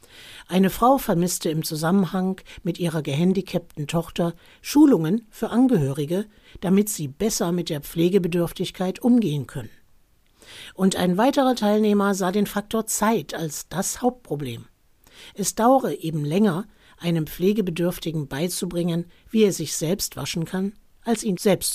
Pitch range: 160-215 Hz